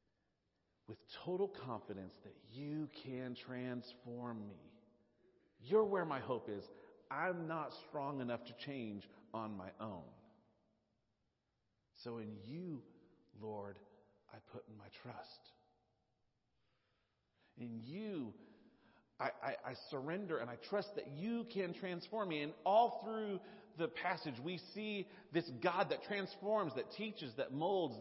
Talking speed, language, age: 125 wpm, English, 40-59